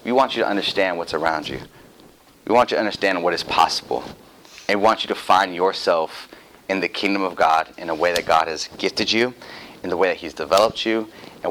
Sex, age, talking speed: male, 30-49, 230 wpm